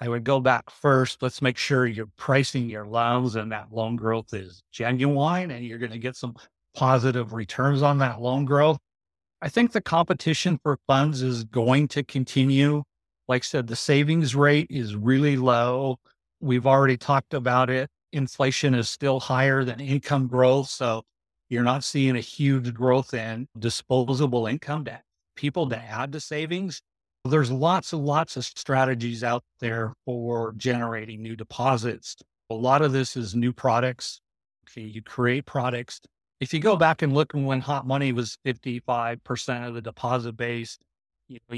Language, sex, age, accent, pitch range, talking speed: English, male, 50-69, American, 115-140 Hz, 165 wpm